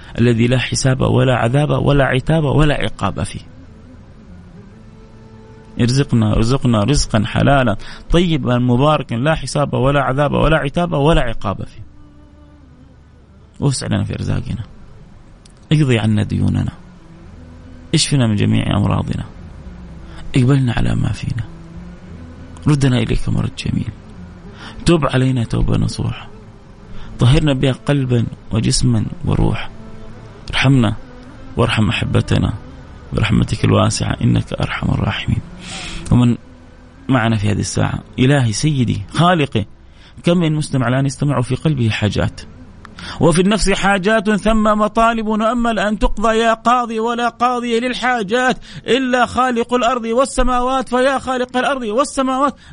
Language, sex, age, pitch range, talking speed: Arabic, male, 30-49, 100-160 Hz, 110 wpm